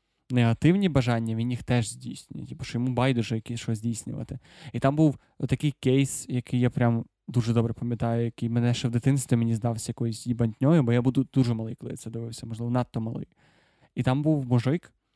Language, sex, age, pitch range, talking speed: Ukrainian, male, 20-39, 120-135 Hz, 195 wpm